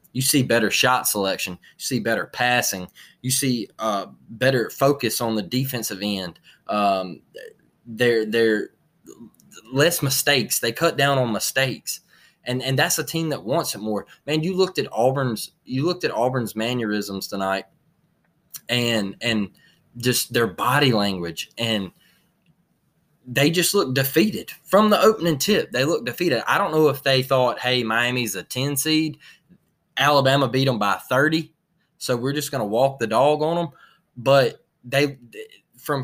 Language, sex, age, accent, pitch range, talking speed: English, male, 20-39, American, 115-155 Hz, 160 wpm